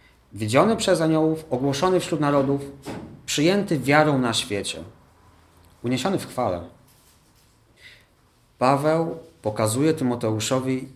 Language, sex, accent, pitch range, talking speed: Polish, male, native, 110-150 Hz, 90 wpm